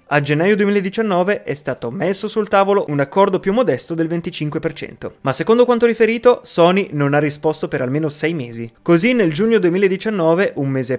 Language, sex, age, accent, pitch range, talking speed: Italian, male, 30-49, native, 135-195 Hz, 175 wpm